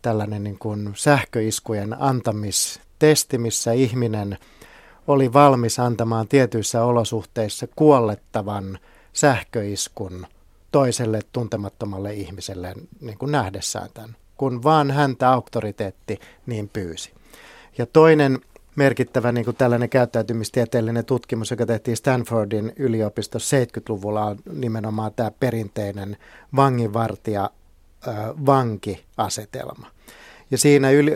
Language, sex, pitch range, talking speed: Finnish, male, 105-130 Hz, 90 wpm